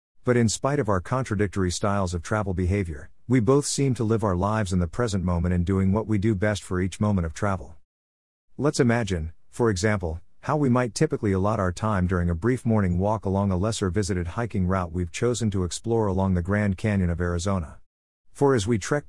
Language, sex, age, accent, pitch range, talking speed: English, male, 50-69, American, 90-115 Hz, 215 wpm